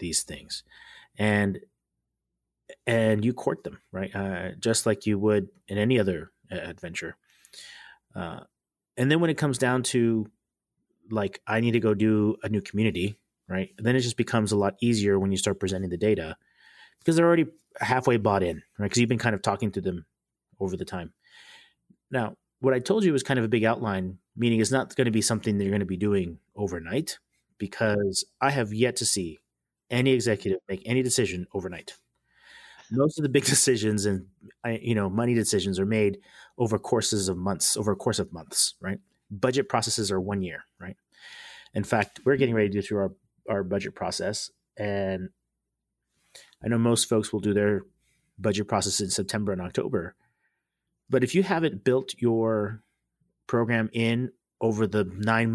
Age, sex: 30-49, male